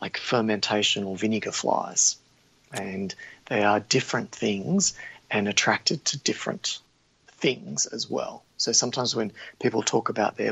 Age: 30-49